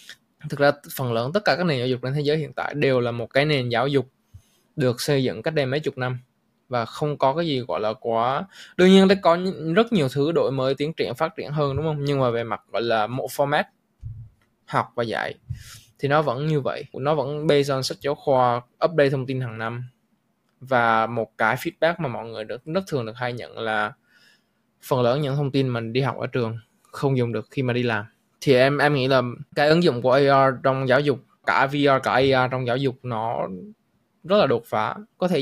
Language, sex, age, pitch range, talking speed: Vietnamese, male, 20-39, 120-155 Hz, 235 wpm